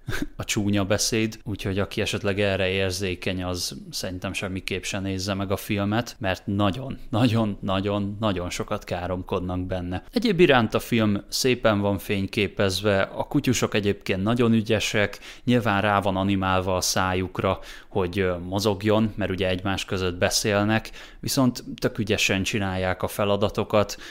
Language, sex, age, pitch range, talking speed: Hungarian, male, 20-39, 95-110 Hz, 135 wpm